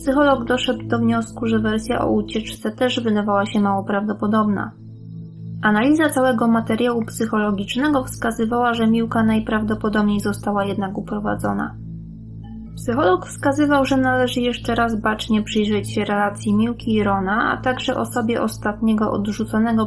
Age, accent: 20-39, native